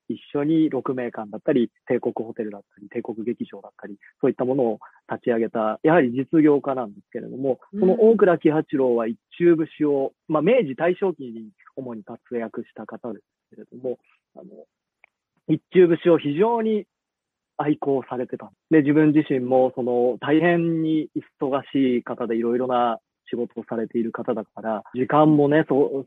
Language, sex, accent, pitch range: Japanese, male, native, 115-155 Hz